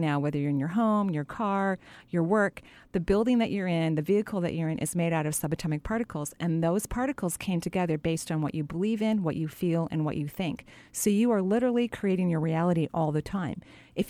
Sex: female